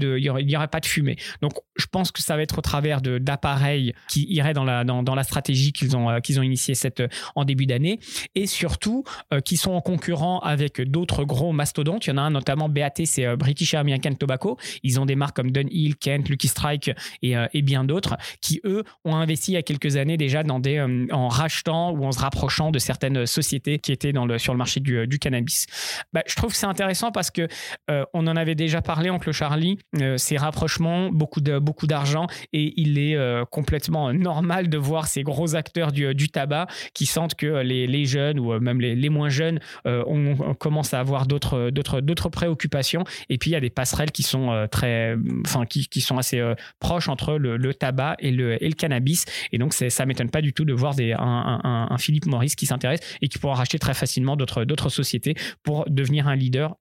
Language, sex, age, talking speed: French, male, 20-39, 235 wpm